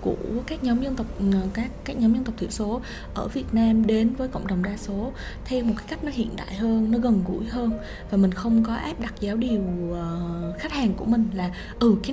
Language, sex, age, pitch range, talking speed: Vietnamese, female, 20-39, 195-235 Hz, 235 wpm